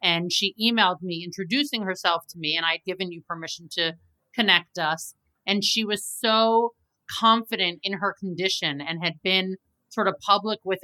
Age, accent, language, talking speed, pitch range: 30-49, American, English, 175 wpm, 175-220 Hz